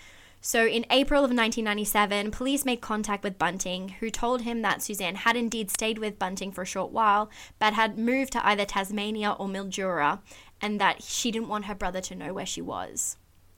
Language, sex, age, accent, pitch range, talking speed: English, female, 10-29, Australian, 185-225 Hz, 195 wpm